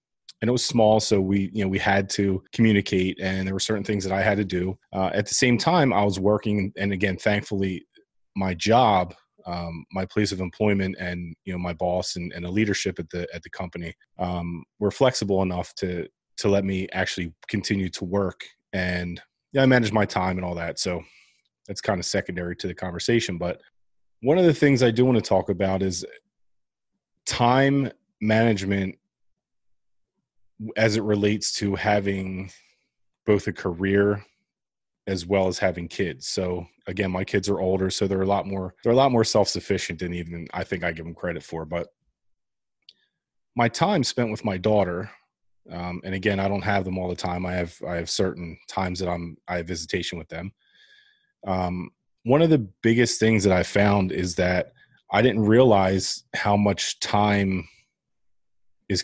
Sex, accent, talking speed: male, American, 185 wpm